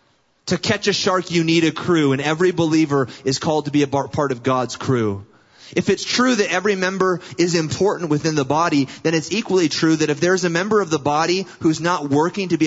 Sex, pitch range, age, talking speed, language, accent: male, 145-185 Hz, 30-49, 225 wpm, English, American